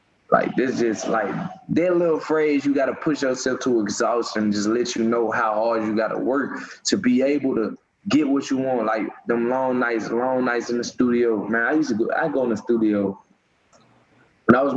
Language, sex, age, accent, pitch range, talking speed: English, male, 20-39, American, 115-140 Hz, 210 wpm